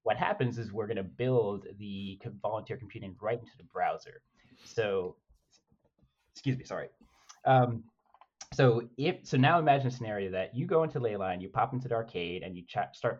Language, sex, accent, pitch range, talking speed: English, male, American, 100-130 Hz, 175 wpm